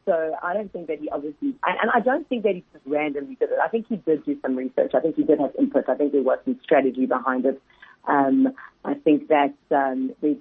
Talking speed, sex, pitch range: 255 wpm, female, 140-205 Hz